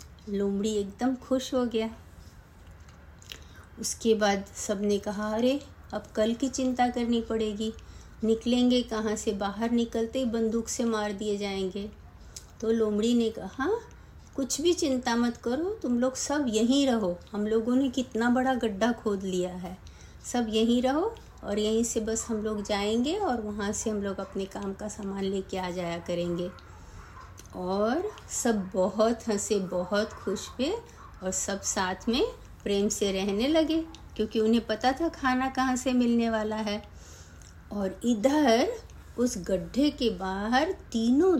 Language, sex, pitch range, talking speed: Hindi, female, 205-270 Hz, 155 wpm